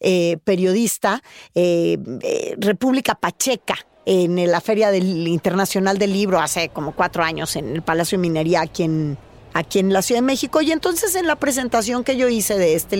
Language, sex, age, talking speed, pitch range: Spanish, female, 40-59, 175 wpm, 185-250 Hz